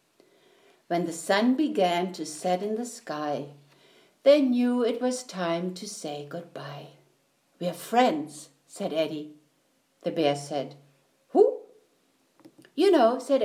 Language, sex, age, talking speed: English, female, 60-79, 125 wpm